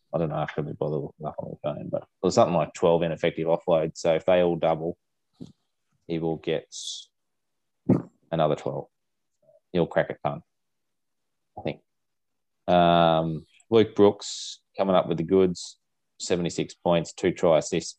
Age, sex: 20-39, male